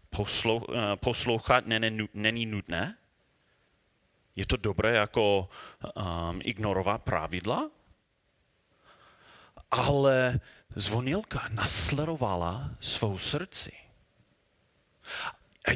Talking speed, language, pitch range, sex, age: 55 wpm, Czech, 105-160 Hz, male, 30-49